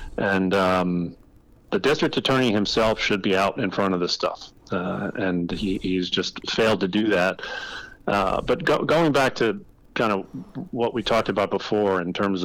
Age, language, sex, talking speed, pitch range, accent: 40-59, English, male, 180 wpm, 95-105 Hz, American